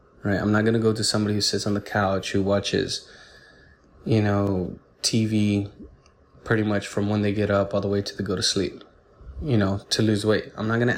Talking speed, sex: 230 wpm, male